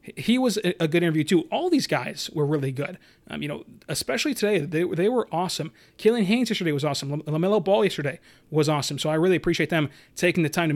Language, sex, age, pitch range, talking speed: English, male, 30-49, 155-175 Hz, 225 wpm